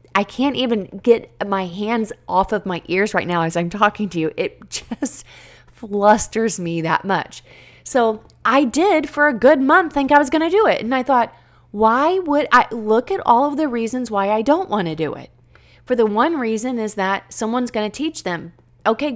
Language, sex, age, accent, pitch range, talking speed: English, female, 30-49, American, 175-240 Hz, 215 wpm